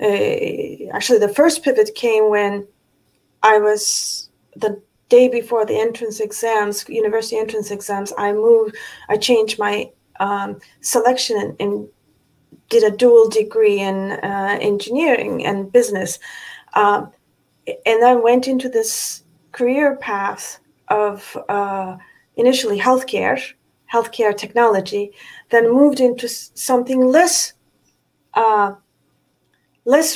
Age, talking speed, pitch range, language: 30-49, 110 wpm, 215-310 Hz, English